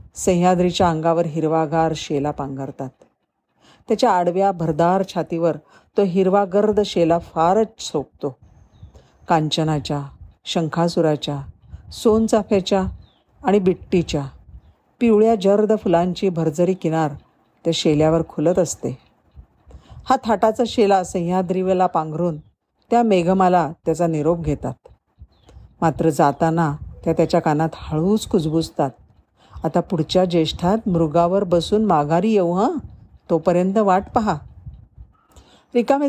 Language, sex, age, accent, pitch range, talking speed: Marathi, female, 50-69, native, 155-195 Hz, 95 wpm